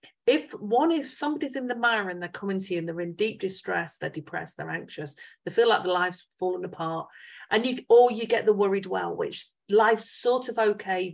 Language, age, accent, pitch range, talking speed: English, 40-59, British, 180-250 Hz, 220 wpm